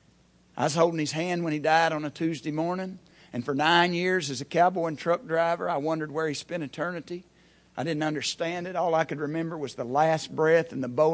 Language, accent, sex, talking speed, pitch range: English, American, male, 230 wpm, 125-160 Hz